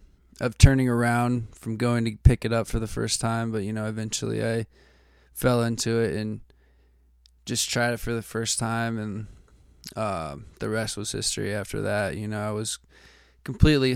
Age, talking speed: 20-39, 180 wpm